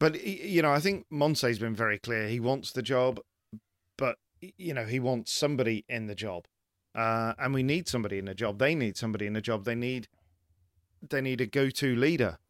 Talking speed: 215 wpm